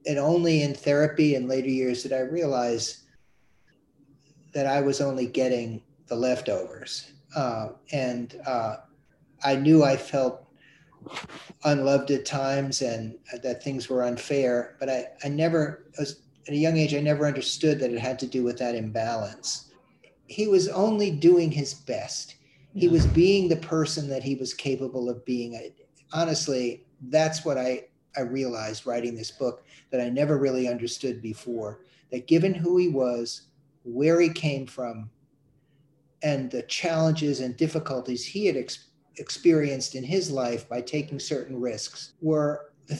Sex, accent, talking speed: male, American, 150 wpm